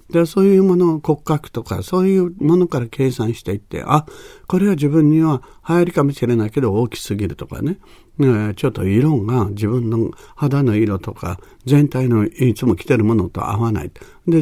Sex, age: male, 60-79